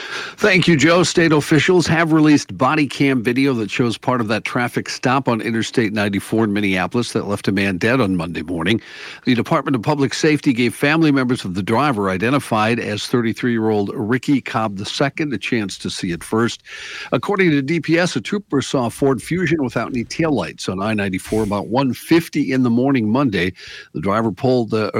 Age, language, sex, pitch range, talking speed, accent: 50-69, English, male, 105-145 Hz, 185 wpm, American